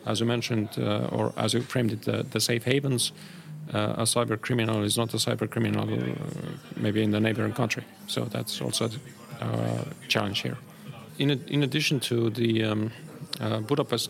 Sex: male